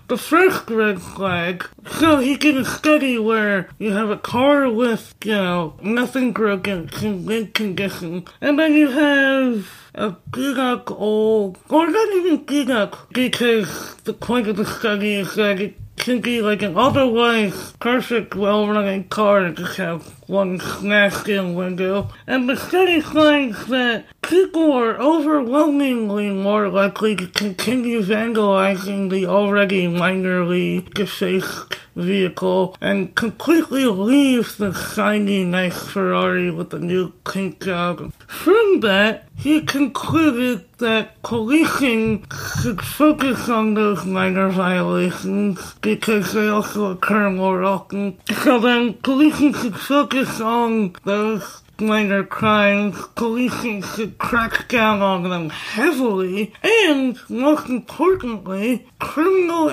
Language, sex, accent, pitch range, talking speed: English, male, American, 195-255 Hz, 125 wpm